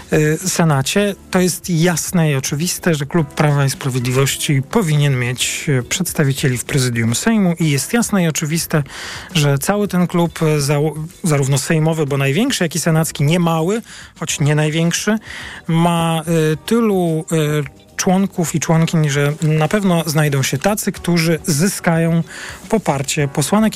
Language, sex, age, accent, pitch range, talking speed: Polish, male, 40-59, native, 145-180 Hz, 135 wpm